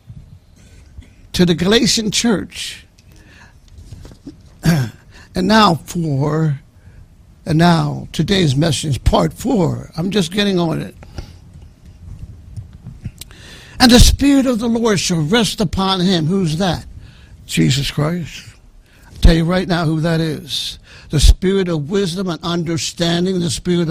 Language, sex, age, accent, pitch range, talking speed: English, male, 60-79, American, 120-195 Hz, 120 wpm